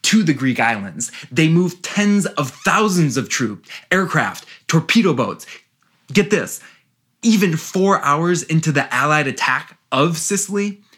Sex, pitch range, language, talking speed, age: male, 130-180 Hz, English, 135 wpm, 20-39